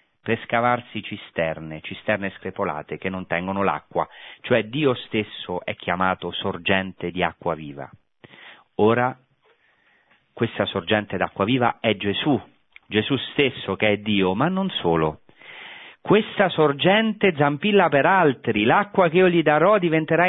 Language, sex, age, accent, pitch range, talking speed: Italian, male, 40-59, native, 95-140 Hz, 130 wpm